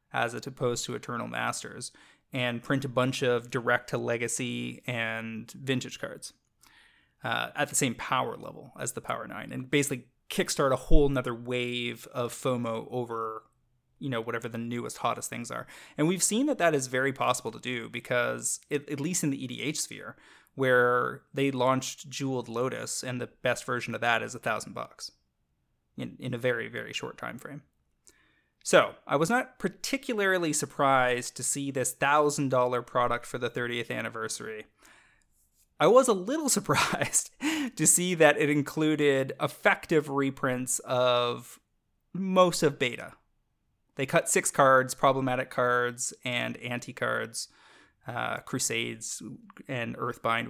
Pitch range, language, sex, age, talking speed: 120-145 Hz, English, male, 20-39, 145 wpm